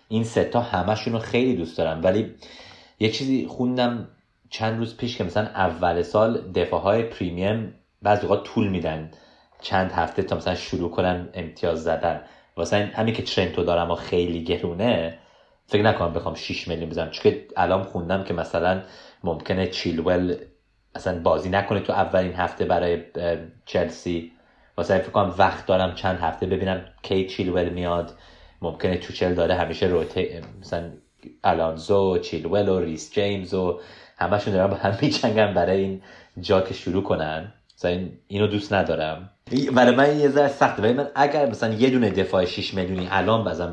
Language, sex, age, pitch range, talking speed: Persian, male, 30-49, 85-105 Hz, 160 wpm